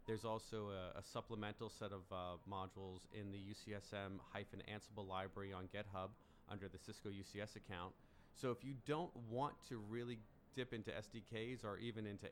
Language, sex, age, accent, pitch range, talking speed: English, male, 30-49, American, 95-115 Hz, 170 wpm